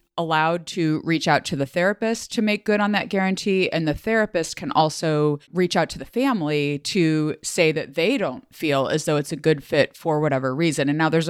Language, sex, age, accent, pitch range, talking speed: English, female, 30-49, American, 150-185 Hz, 220 wpm